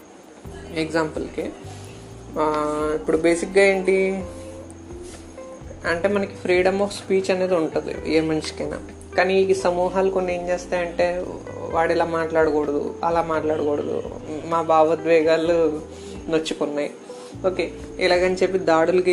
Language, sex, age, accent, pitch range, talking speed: Telugu, female, 30-49, native, 155-185 Hz, 95 wpm